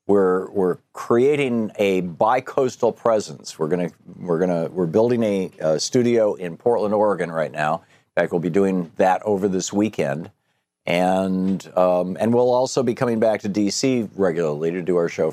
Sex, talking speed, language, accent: male, 180 wpm, English, American